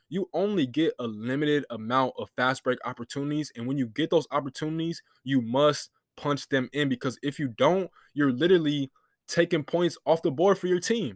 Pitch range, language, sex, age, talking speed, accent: 125-165 Hz, English, male, 20-39, 190 wpm, American